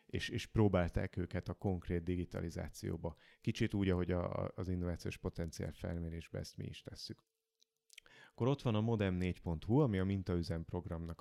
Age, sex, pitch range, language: 30-49, male, 90-120 Hz, Hungarian